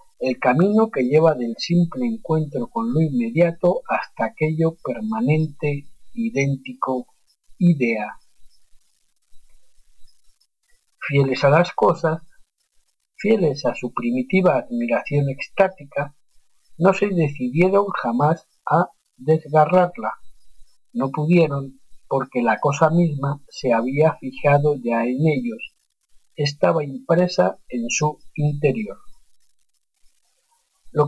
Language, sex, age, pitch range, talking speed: Spanish, male, 50-69, 135-185 Hz, 95 wpm